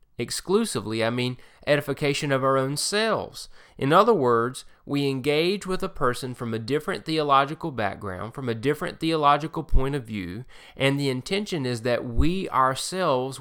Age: 30-49